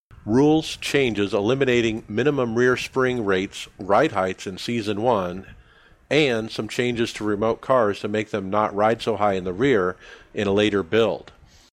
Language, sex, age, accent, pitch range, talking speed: English, male, 50-69, American, 95-115 Hz, 165 wpm